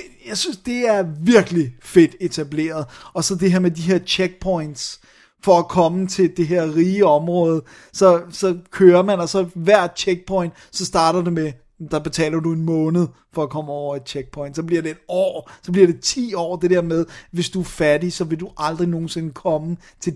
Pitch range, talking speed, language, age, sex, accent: 165-195 Hz, 210 wpm, Danish, 30-49, male, native